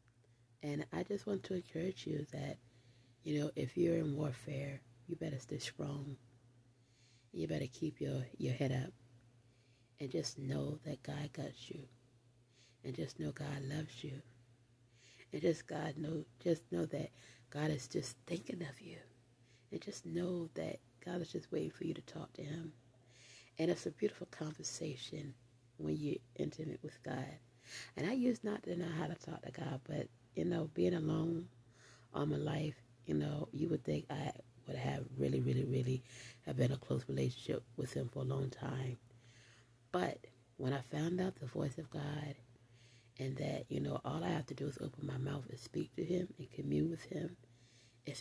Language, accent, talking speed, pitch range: English, American, 185 wpm, 120-155 Hz